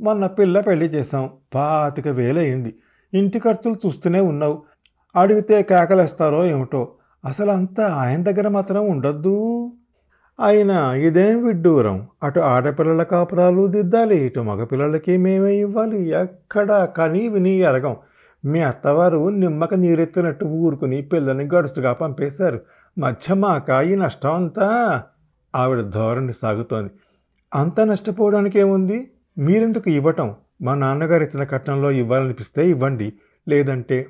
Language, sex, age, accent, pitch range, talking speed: Telugu, male, 50-69, native, 130-190 Hz, 100 wpm